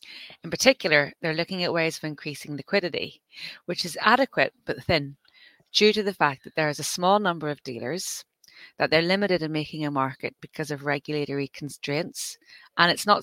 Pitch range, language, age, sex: 150-185 Hz, English, 30-49, female